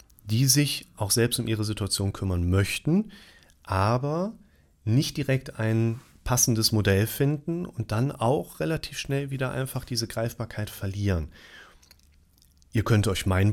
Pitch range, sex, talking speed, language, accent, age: 95-125 Hz, male, 135 wpm, German, German, 30-49